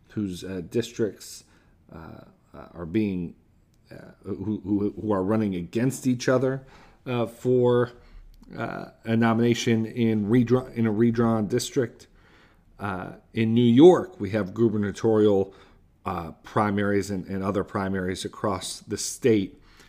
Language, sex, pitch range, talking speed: English, male, 100-125 Hz, 125 wpm